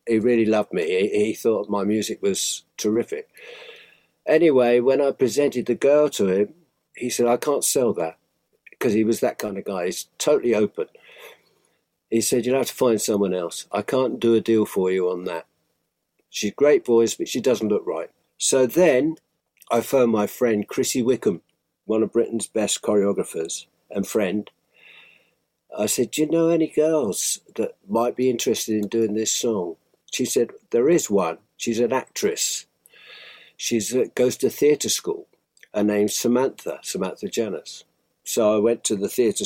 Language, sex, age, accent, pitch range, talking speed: English, male, 50-69, British, 110-170 Hz, 175 wpm